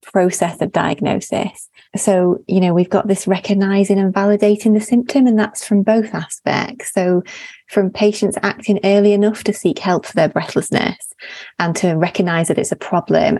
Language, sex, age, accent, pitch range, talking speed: English, female, 30-49, British, 185-215 Hz, 170 wpm